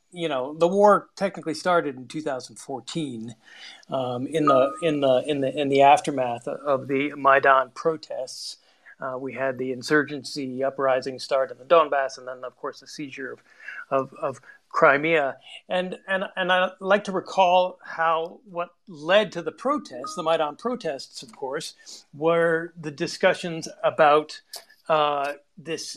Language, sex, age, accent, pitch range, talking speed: English, male, 40-59, American, 135-185 Hz, 155 wpm